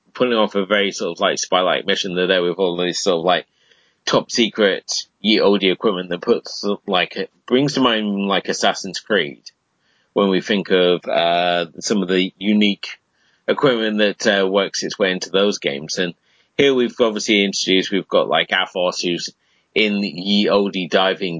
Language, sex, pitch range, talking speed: English, male, 100-120 Hz, 175 wpm